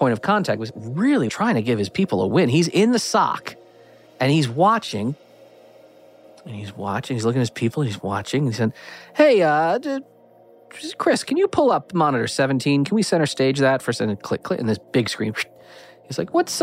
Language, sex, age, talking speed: English, male, 30-49, 200 wpm